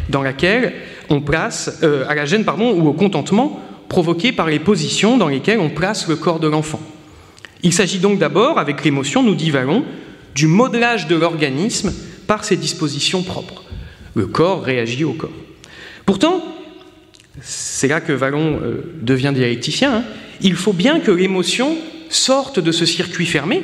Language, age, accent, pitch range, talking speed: French, 40-59, French, 150-220 Hz, 165 wpm